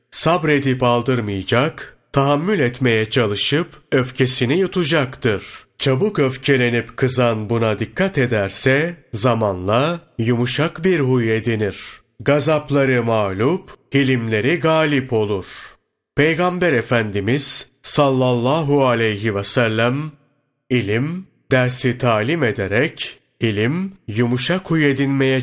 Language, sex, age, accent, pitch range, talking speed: Turkish, male, 30-49, native, 115-145 Hz, 85 wpm